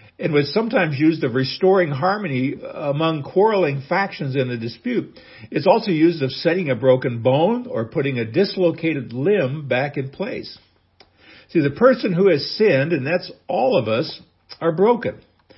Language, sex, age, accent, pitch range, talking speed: English, male, 60-79, American, 130-180 Hz, 160 wpm